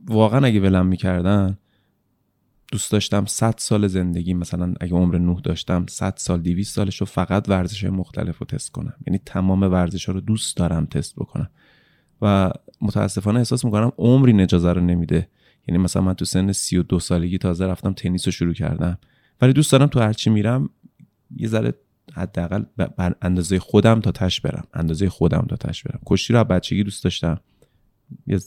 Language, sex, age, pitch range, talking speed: Persian, male, 20-39, 90-115 Hz, 170 wpm